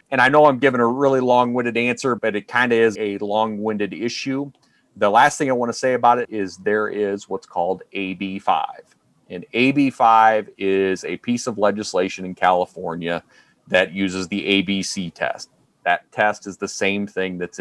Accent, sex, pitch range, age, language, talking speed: American, male, 100-125 Hz, 30-49, English, 180 wpm